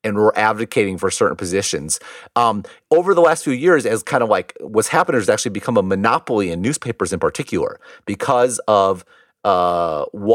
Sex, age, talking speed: male, 30-49, 175 wpm